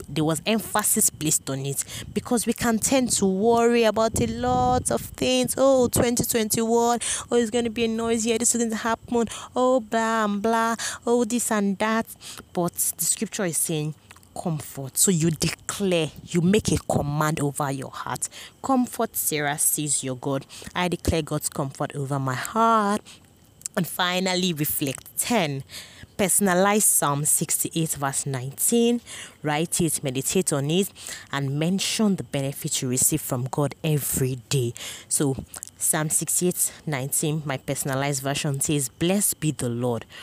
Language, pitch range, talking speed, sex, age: English, 135-210 Hz, 150 wpm, female, 20-39